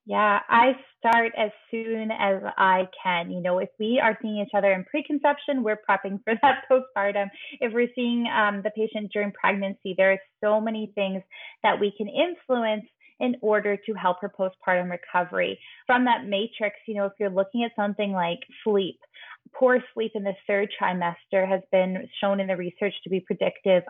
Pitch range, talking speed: 185-225 Hz, 185 wpm